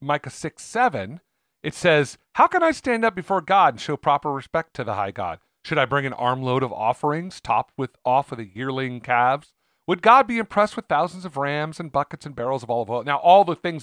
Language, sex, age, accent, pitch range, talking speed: English, male, 40-59, American, 130-185 Hz, 230 wpm